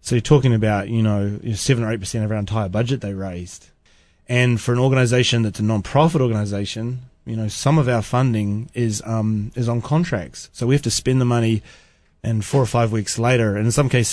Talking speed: 220 wpm